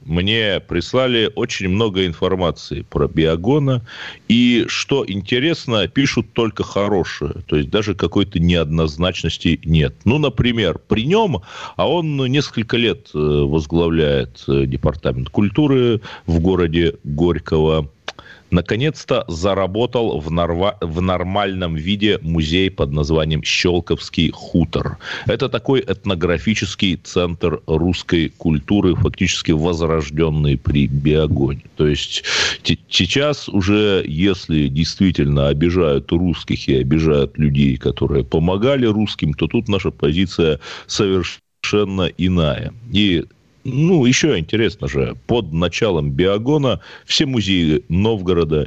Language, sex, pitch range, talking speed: Russian, male, 75-105 Hz, 105 wpm